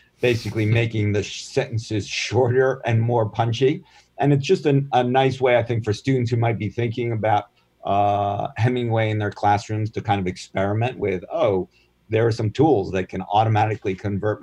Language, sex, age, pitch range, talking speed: English, male, 50-69, 95-115 Hz, 175 wpm